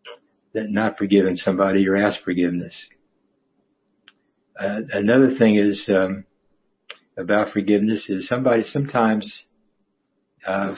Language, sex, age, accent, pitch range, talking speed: English, male, 60-79, American, 100-115 Hz, 100 wpm